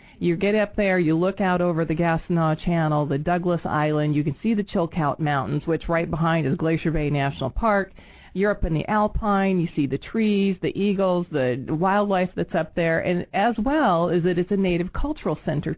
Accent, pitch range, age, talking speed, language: American, 160-195 Hz, 40-59, 205 wpm, English